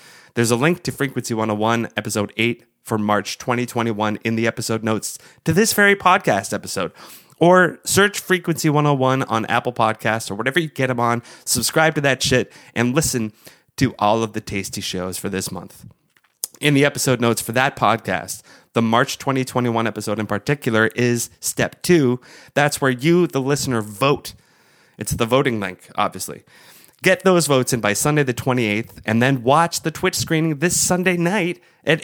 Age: 30-49